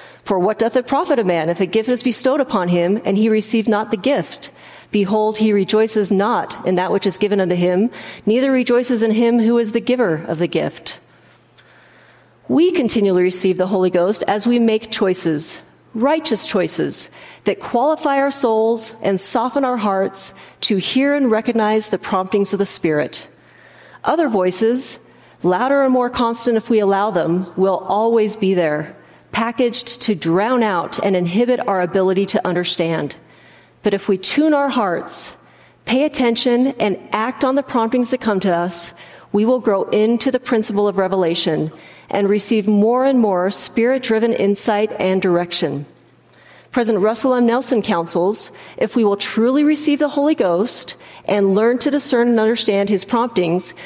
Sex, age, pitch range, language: female, 40-59, 190-240 Hz, English